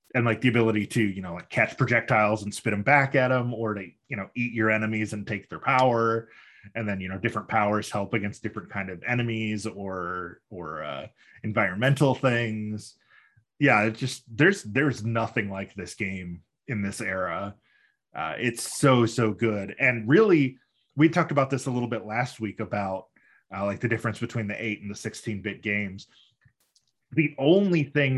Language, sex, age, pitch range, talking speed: English, male, 20-39, 105-125 Hz, 185 wpm